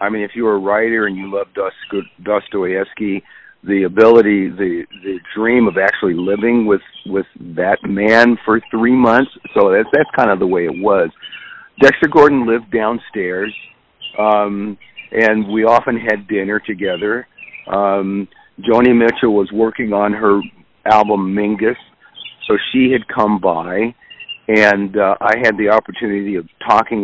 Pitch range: 100-120 Hz